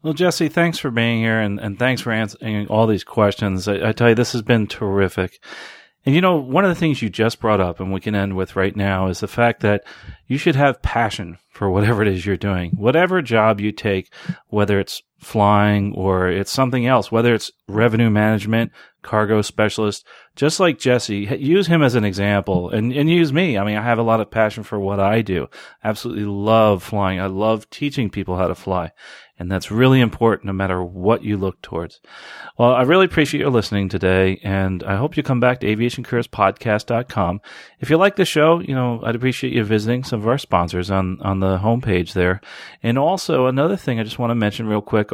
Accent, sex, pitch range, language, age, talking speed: American, male, 100-120 Hz, English, 40-59, 215 wpm